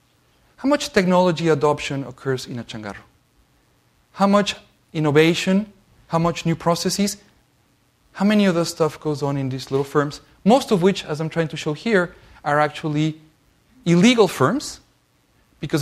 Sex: male